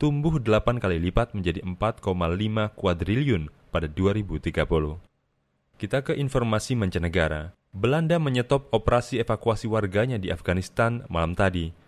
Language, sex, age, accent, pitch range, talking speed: Indonesian, male, 30-49, native, 90-115 Hz, 110 wpm